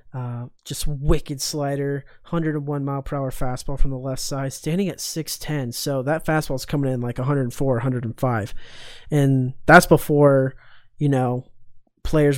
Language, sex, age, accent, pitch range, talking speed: English, male, 20-39, American, 135-155 Hz, 150 wpm